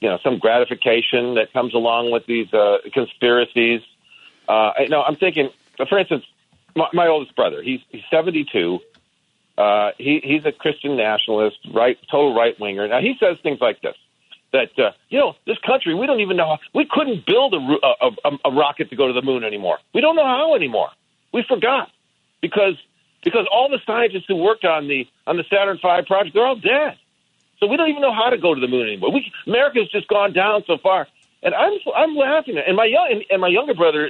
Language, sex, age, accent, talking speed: English, male, 50-69, American, 215 wpm